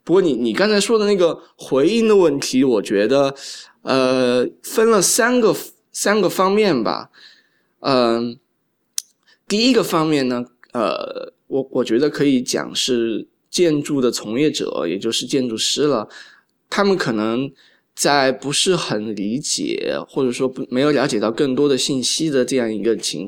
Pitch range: 120-155 Hz